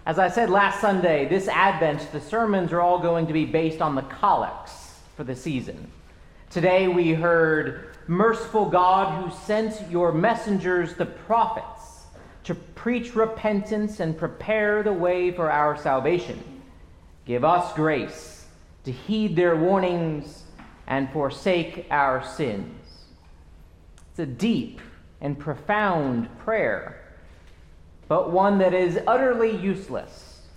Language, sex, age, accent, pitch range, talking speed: English, male, 40-59, American, 135-205 Hz, 130 wpm